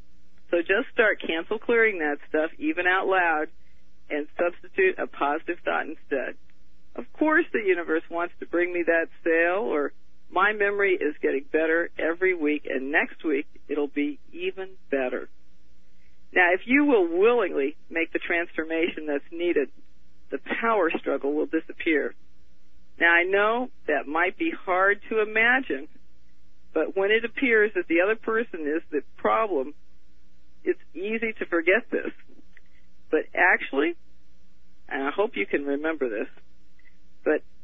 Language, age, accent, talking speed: English, 50-69, American, 145 wpm